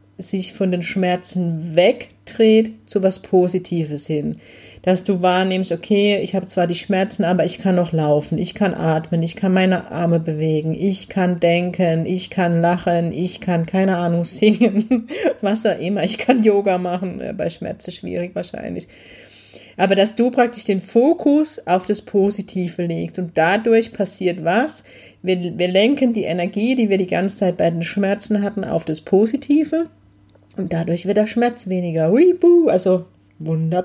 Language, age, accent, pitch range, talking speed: German, 30-49, German, 170-205 Hz, 165 wpm